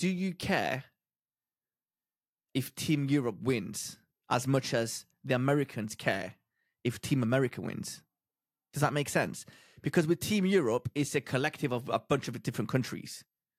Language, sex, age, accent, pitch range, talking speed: English, male, 30-49, British, 130-165 Hz, 150 wpm